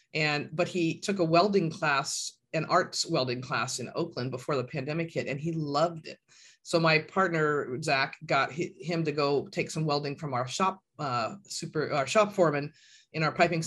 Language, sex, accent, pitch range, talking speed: English, female, American, 140-180 Hz, 190 wpm